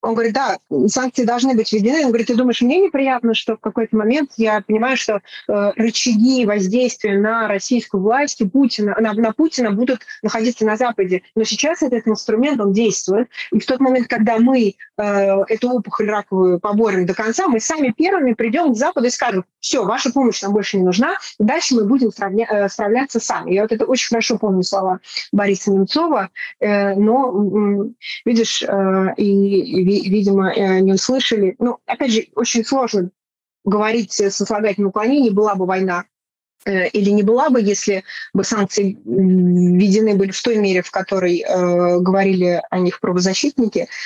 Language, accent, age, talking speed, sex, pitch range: Russian, native, 30-49, 170 wpm, female, 195-235 Hz